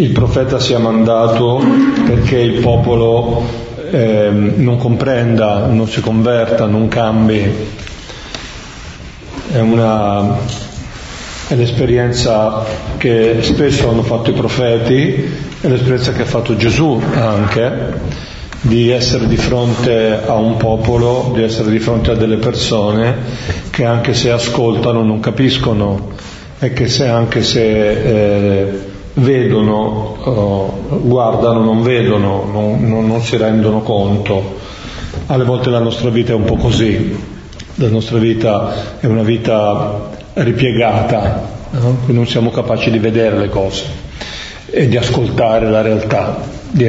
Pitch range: 110-120 Hz